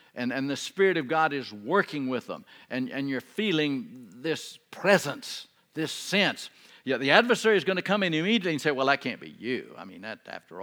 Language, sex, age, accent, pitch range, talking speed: English, male, 60-79, American, 160-235 Hz, 215 wpm